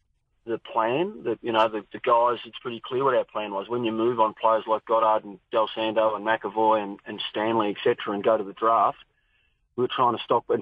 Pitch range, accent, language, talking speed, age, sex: 110-130 Hz, Australian, English, 235 wpm, 30-49, male